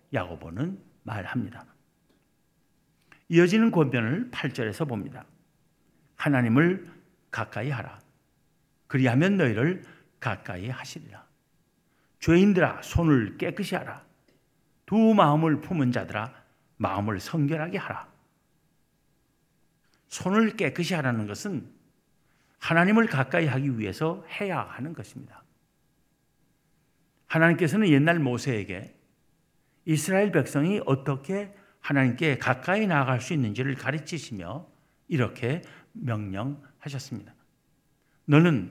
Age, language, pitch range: 50-69, Korean, 130-175 Hz